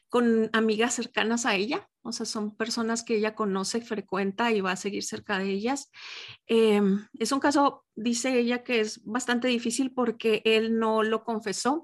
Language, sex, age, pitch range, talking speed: Spanish, female, 30-49, 215-245 Hz, 180 wpm